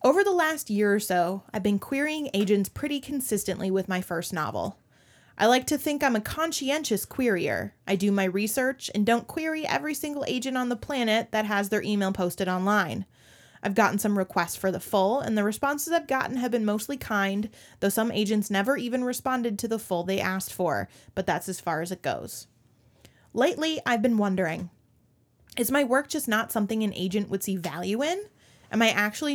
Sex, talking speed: female, 200 wpm